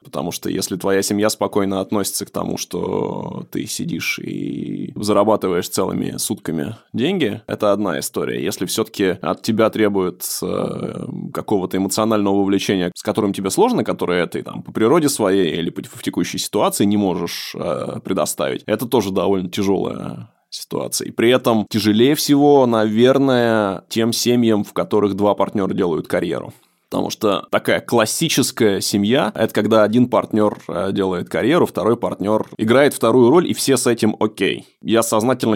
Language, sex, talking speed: Russian, male, 150 wpm